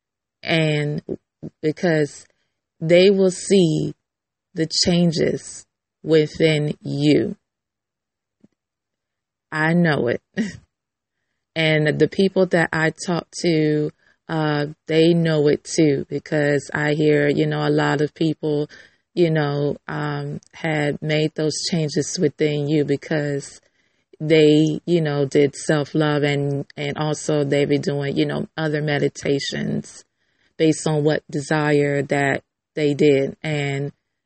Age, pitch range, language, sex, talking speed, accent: 30-49, 150-175 Hz, English, female, 115 wpm, American